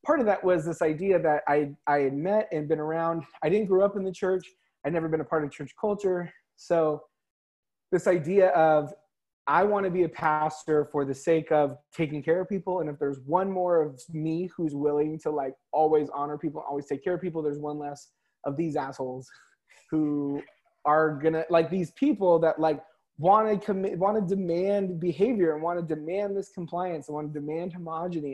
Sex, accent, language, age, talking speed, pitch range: male, American, English, 20-39, 210 wpm, 150-180 Hz